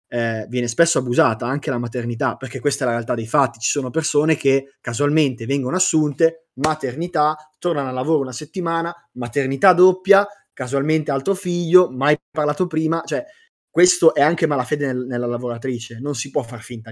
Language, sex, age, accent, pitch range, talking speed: Italian, male, 20-39, native, 120-150 Hz, 170 wpm